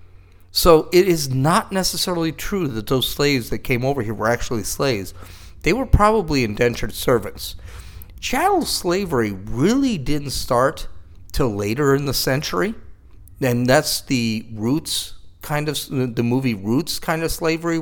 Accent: American